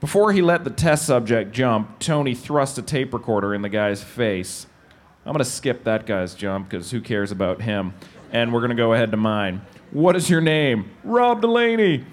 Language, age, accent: English, 30-49, American